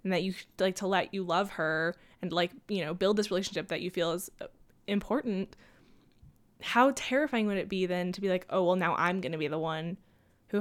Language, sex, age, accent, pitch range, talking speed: English, female, 10-29, American, 175-205 Hz, 225 wpm